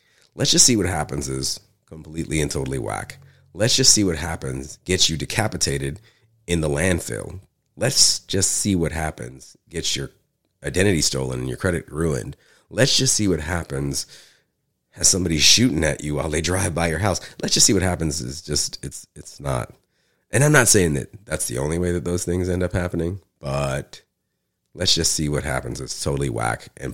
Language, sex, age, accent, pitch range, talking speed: English, male, 30-49, American, 75-95 Hz, 190 wpm